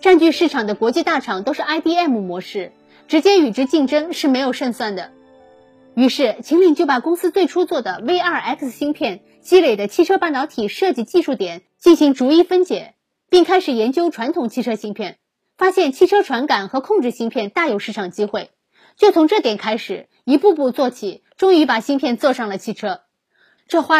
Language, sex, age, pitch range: Chinese, female, 20-39, 230-330 Hz